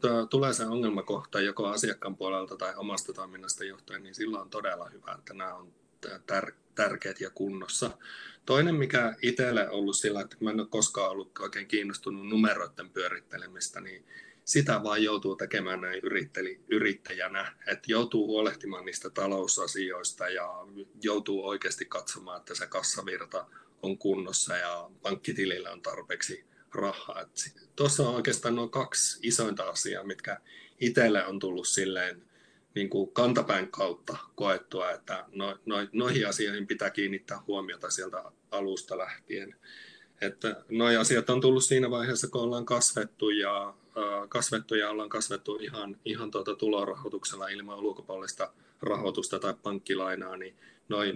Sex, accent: male, native